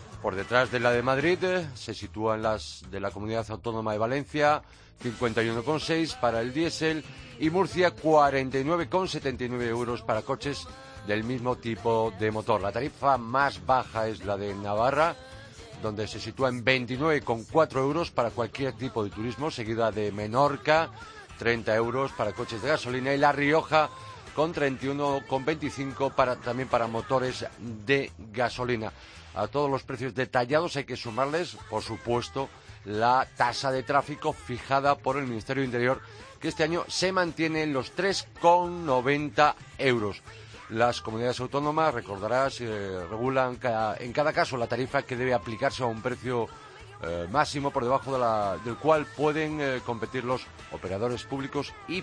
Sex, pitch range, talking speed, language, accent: male, 110-140 Hz, 145 wpm, Spanish, Spanish